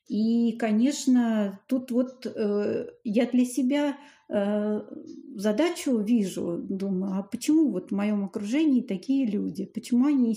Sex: female